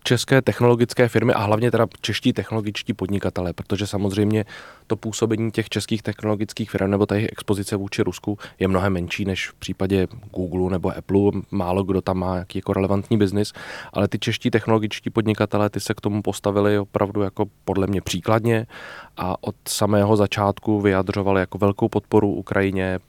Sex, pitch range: male, 95-105 Hz